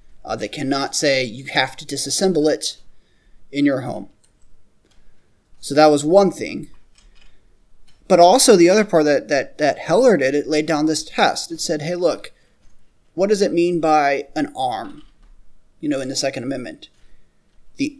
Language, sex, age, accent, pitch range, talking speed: English, male, 30-49, American, 145-180 Hz, 165 wpm